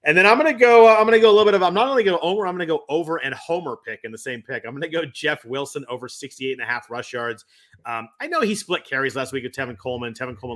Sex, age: male, 30-49